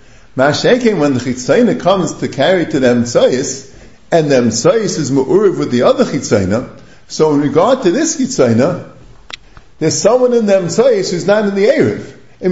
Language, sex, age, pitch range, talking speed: English, male, 50-69, 140-210 Hz, 170 wpm